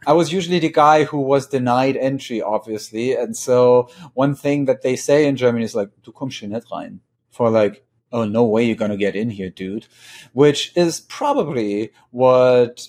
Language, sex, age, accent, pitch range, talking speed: English, male, 30-49, German, 110-135 Hz, 190 wpm